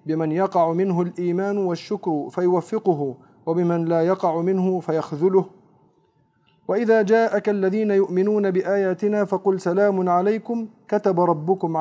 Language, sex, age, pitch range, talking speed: Arabic, male, 40-59, 165-195 Hz, 105 wpm